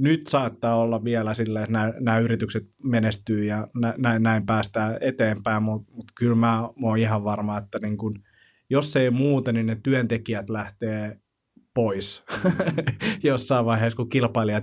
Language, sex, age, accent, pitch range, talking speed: Finnish, male, 30-49, native, 110-125 Hz, 140 wpm